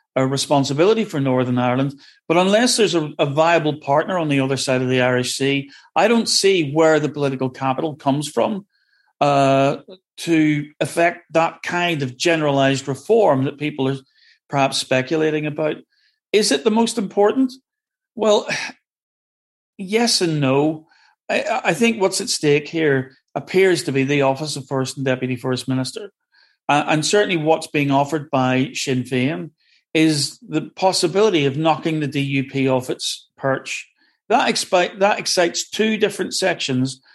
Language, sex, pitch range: English, male, 135-180 Hz